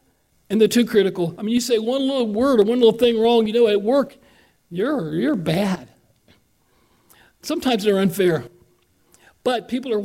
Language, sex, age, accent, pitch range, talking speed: English, male, 60-79, American, 175-215 Hz, 175 wpm